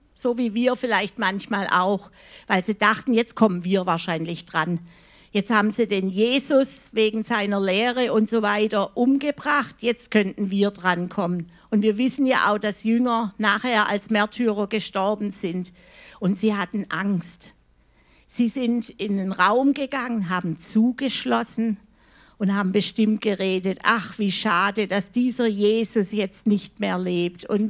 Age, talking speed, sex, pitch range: 50-69, 150 wpm, female, 190-250 Hz